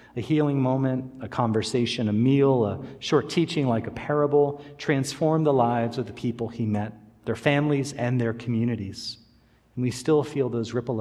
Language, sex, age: English, male, 40-59